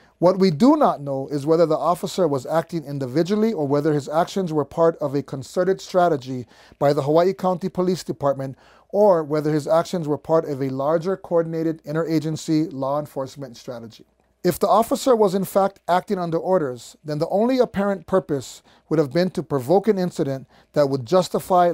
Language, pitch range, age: English, 150-195 Hz, 30-49